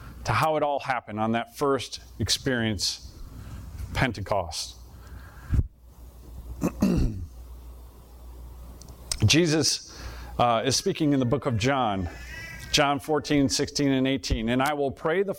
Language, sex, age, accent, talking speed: English, male, 40-59, American, 115 wpm